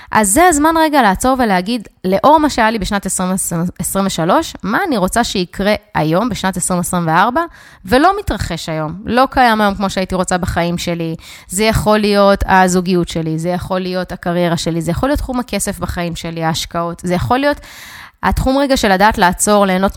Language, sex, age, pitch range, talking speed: Hebrew, female, 20-39, 180-250 Hz, 175 wpm